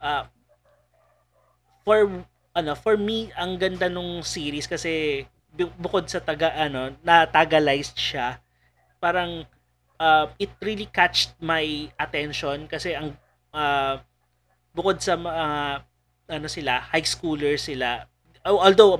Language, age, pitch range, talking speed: Filipino, 30-49, 135-170 Hz, 120 wpm